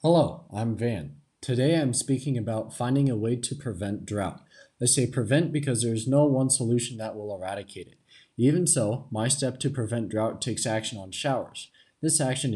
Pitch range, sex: 105-135 Hz, male